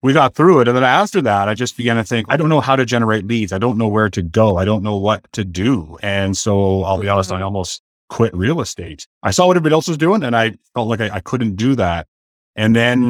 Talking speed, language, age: 275 wpm, English, 30-49